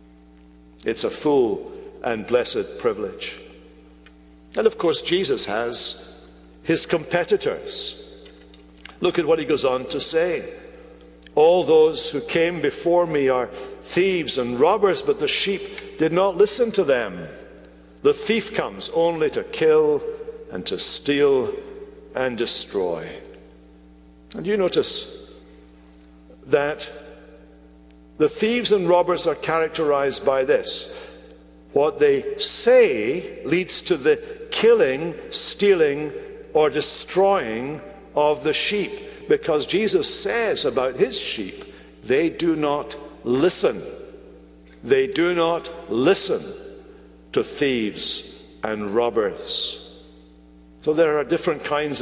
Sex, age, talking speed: male, 60-79, 115 wpm